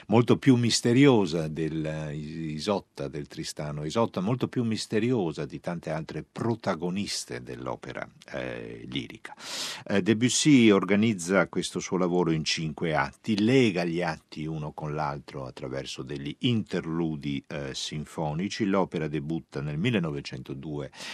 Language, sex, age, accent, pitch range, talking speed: Italian, male, 50-69, native, 75-110 Hz, 115 wpm